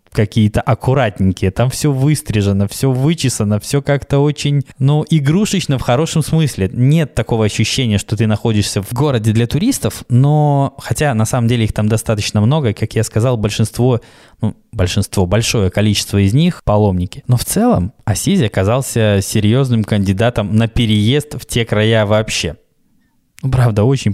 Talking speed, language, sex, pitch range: 145 wpm, Russian, male, 105-135 Hz